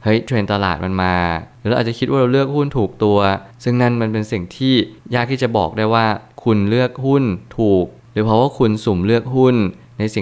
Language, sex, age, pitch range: Thai, male, 20-39, 100-120 Hz